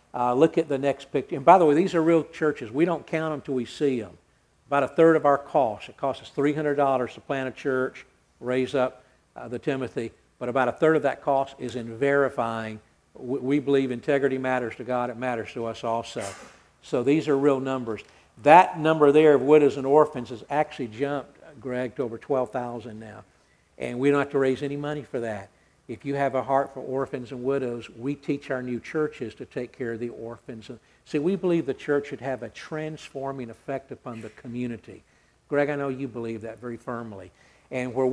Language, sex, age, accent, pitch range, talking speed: English, male, 50-69, American, 120-145 Hz, 210 wpm